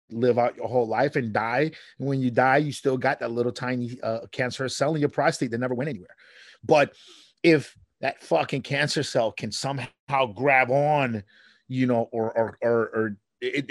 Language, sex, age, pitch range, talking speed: English, male, 30-49, 115-145 Hz, 195 wpm